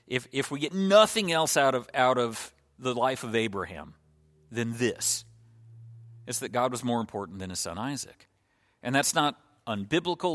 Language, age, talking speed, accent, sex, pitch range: English, 40-59, 175 wpm, American, male, 105-135 Hz